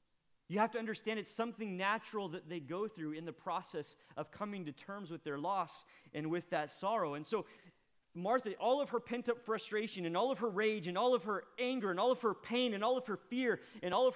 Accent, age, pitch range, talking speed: American, 30-49, 150-220 Hz, 235 wpm